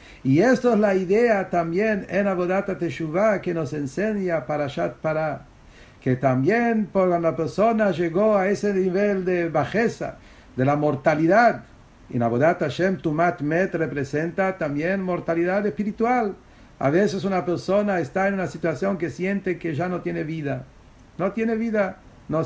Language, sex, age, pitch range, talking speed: English, male, 50-69, 145-195 Hz, 160 wpm